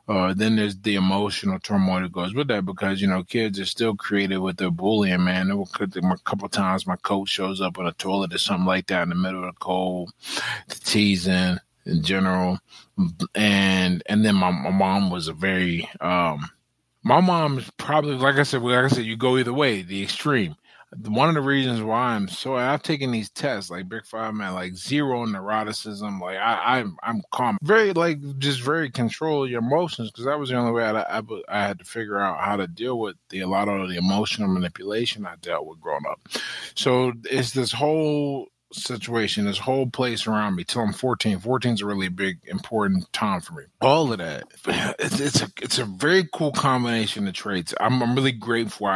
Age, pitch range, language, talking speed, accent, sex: 20-39, 95-125 Hz, English, 210 wpm, American, male